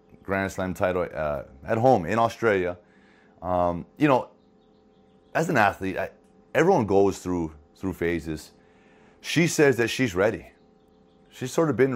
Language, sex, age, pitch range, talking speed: English, male, 30-49, 85-110 Hz, 145 wpm